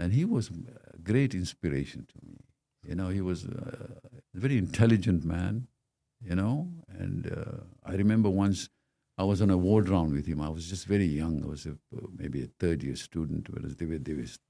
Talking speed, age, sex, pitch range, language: 205 wpm, 60-79, male, 80-110 Hz, English